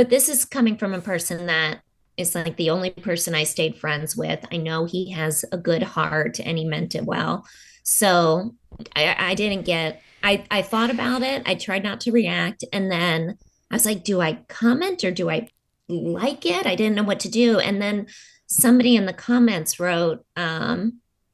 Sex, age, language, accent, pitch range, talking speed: female, 20-39, English, American, 170-235 Hz, 200 wpm